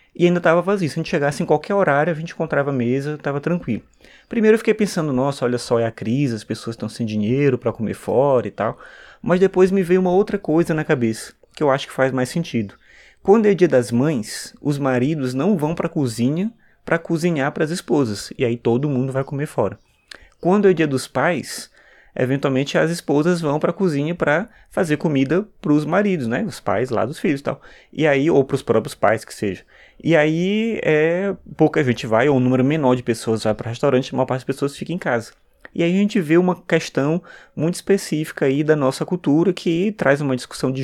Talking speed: 230 wpm